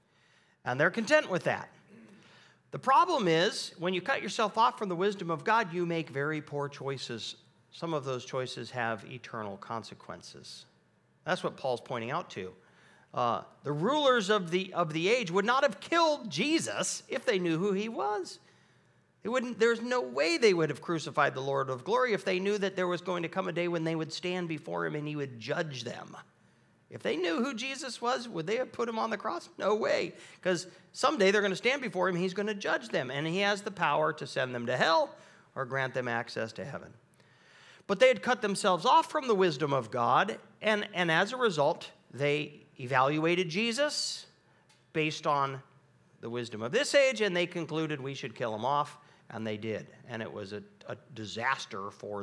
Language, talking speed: English, 205 wpm